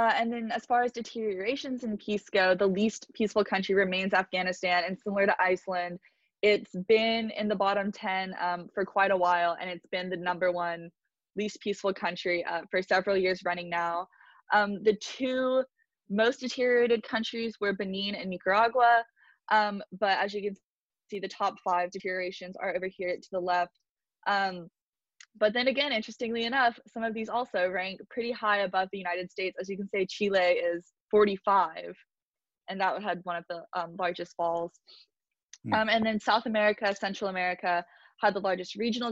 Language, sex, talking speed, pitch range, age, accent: English, female, 180 wpm, 180-215 Hz, 20-39, American